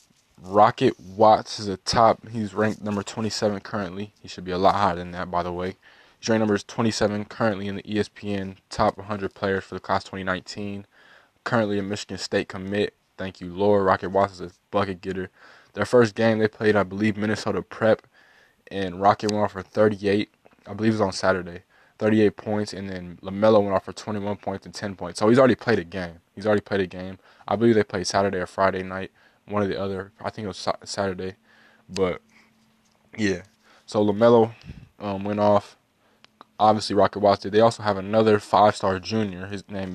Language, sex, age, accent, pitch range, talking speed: English, male, 20-39, American, 95-105 Hz, 195 wpm